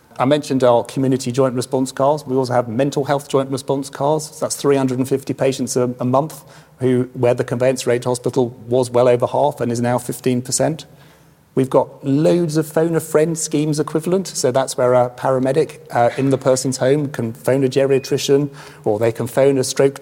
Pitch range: 120-140 Hz